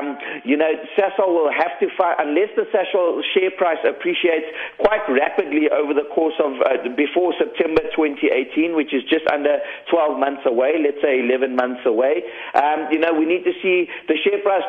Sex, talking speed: male, 190 wpm